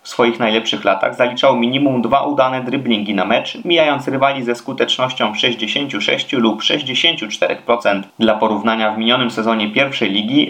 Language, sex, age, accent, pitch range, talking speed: Polish, male, 30-49, native, 110-135 Hz, 145 wpm